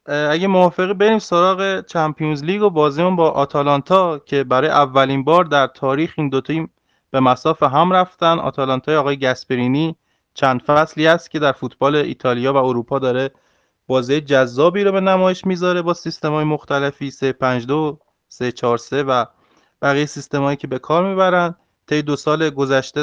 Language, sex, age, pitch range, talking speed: Persian, male, 20-39, 135-170 Hz, 150 wpm